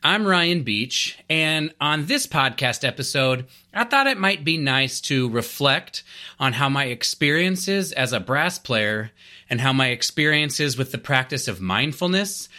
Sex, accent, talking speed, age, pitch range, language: male, American, 155 wpm, 30-49, 110-150 Hz, English